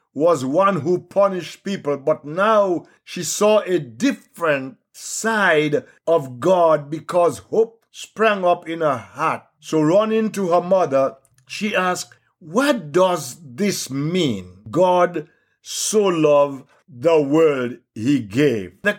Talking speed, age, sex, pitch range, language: 125 wpm, 60-79, male, 150-195 Hz, English